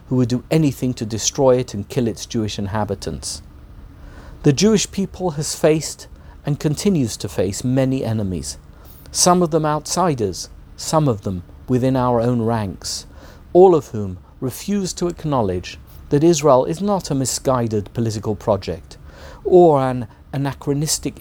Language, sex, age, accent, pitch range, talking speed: English, male, 50-69, British, 95-145 Hz, 145 wpm